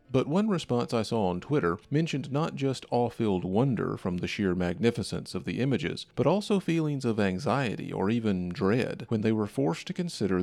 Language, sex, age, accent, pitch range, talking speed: English, male, 40-59, American, 95-135 Hz, 190 wpm